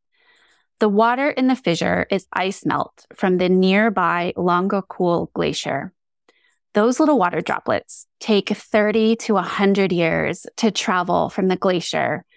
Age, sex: 20-39, female